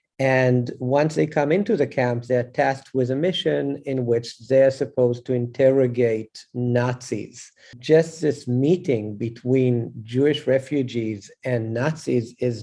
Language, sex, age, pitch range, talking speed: English, male, 50-69, 120-140 Hz, 135 wpm